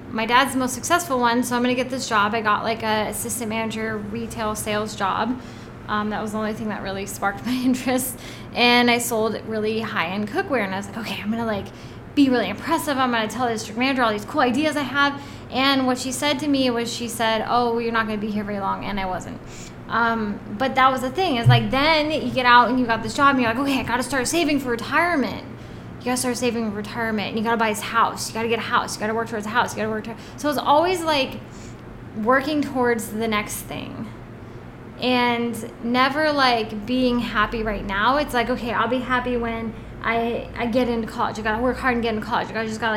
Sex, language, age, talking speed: female, English, 10-29, 255 wpm